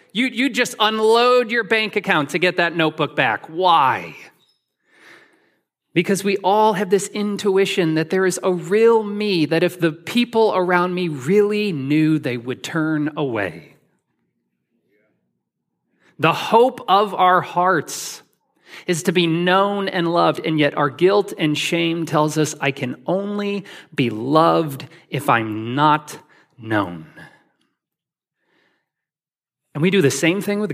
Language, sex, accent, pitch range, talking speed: English, male, American, 155-210 Hz, 140 wpm